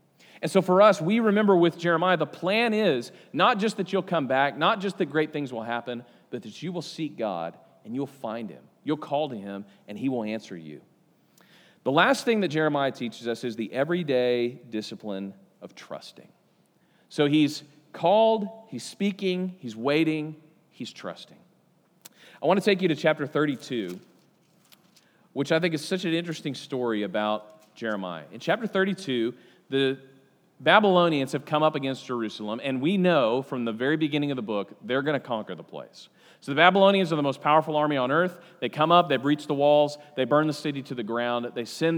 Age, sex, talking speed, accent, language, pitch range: 40-59, male, 195 wpm, American, English, 125-180 Hz